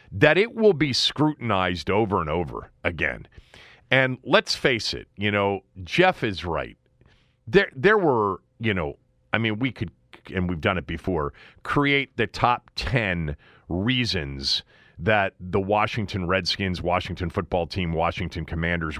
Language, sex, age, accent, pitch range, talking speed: English, male, 40-59, American, 90-145 Hz, 145 wpm